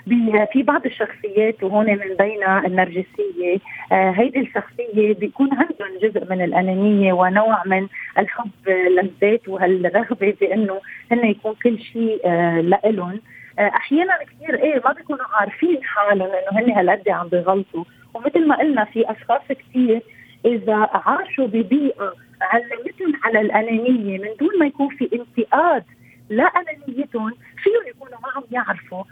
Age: 30-49